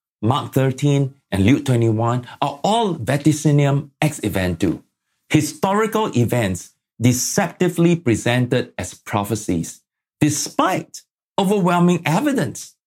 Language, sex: English, male